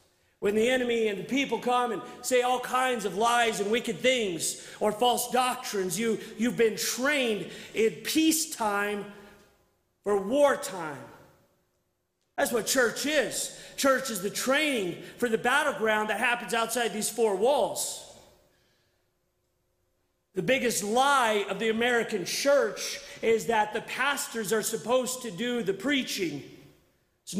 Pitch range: 185-235 Hz